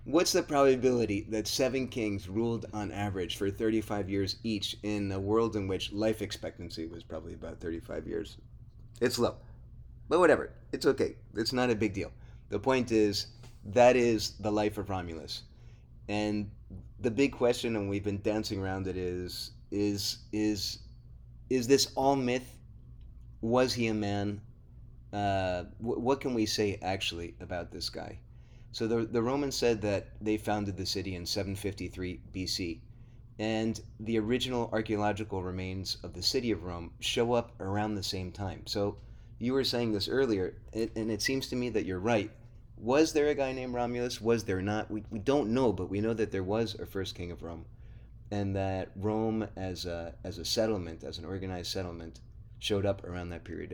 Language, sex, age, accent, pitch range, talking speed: English, male, 30-49, American, 95-115 Hz, 180 wpm